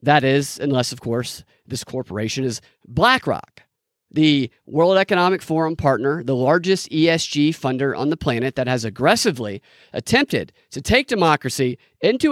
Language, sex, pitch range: English, male, 150-250 Hz